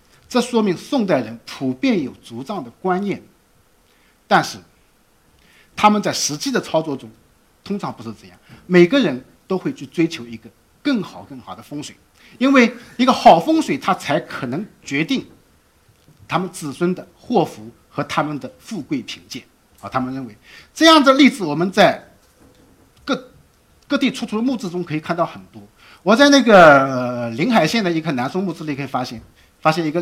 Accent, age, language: native, 50-69, Chinese